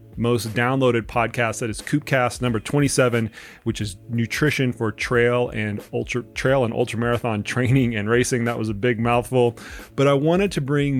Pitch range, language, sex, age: 110-130 Hz, English, male, 30-49